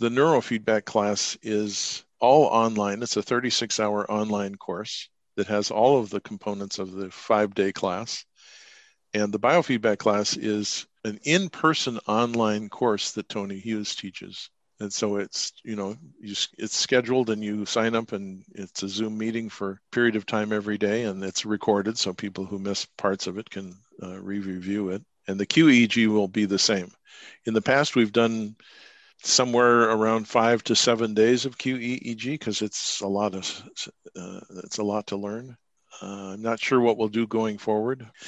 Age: 50-69